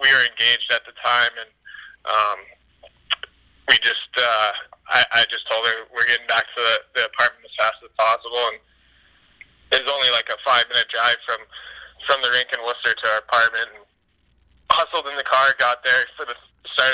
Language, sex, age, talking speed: English, male, 20-39, 190 wpm